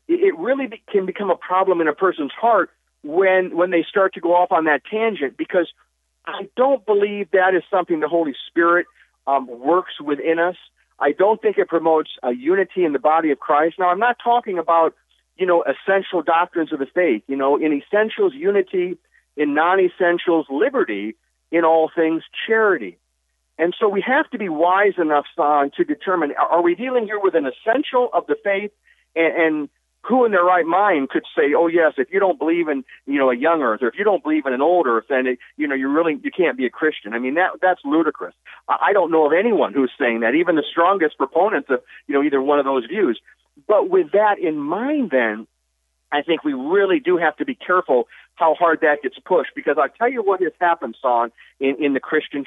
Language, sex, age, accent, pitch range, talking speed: English, male, 50-69, American, 145-205 Hz, 215 wpm